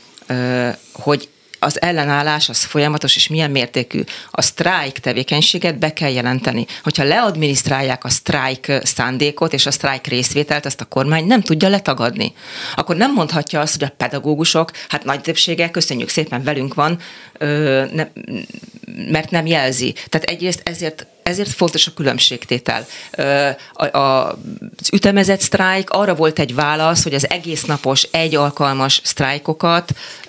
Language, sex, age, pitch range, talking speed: Hungarian, female, 30-49, 135-165 Hz, 135 wpm